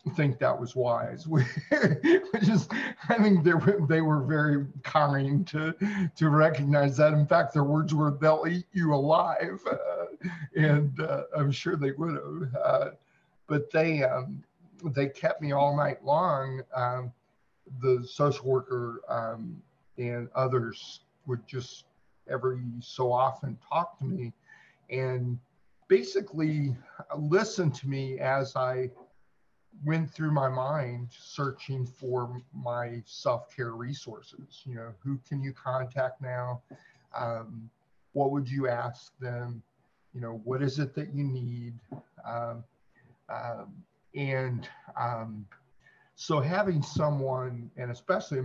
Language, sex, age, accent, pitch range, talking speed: English, male, 50-69, American, 125-150 Hz, 130 wpm